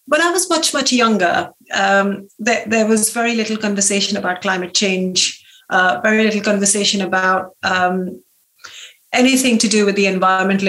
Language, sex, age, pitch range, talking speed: English, female, 30-49, 195-235 Hz, 155 wpm